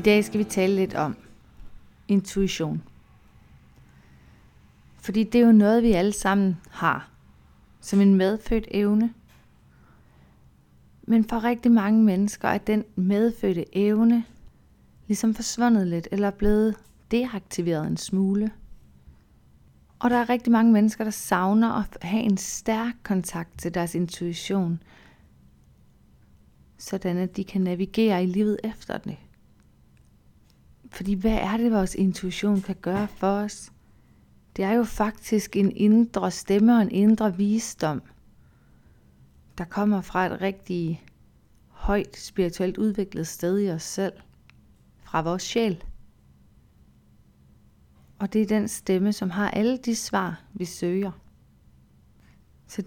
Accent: native